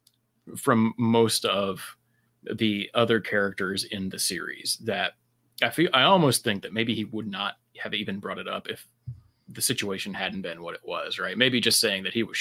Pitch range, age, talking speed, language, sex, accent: 105-120 Hz, 30-49, 195 wpm, English, male, American